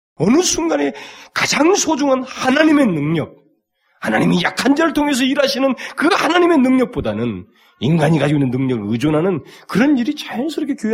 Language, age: Korean, 30-49